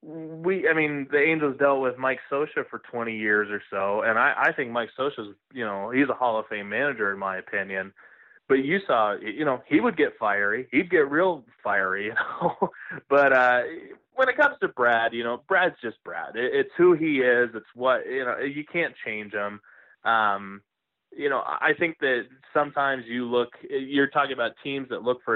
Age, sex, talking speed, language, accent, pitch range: 20-39, male, 205 wpm, English, American, 110-145 Hz